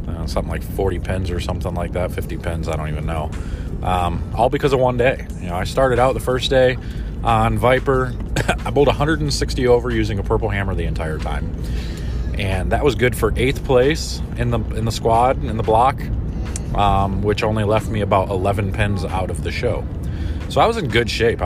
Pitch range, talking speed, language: 90-110 Hz, 210 wpm, English